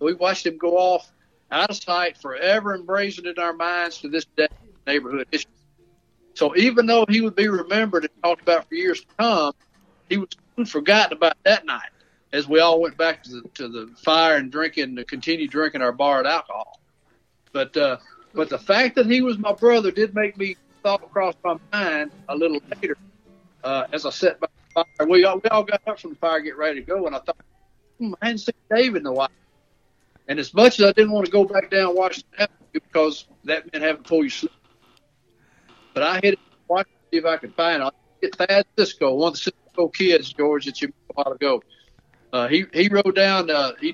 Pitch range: 155-205 Hz